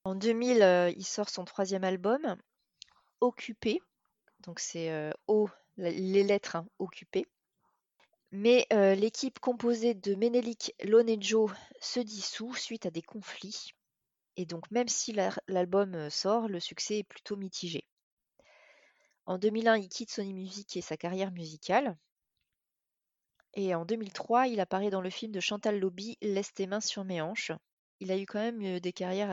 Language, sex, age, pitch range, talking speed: French, female, 30-49, 185-225 Hz, 150 wpm